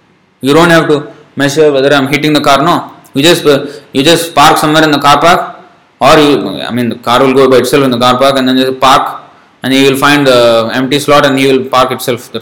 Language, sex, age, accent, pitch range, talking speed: English, male, 20-39, Indian, 130-165 Hz, 260 wpm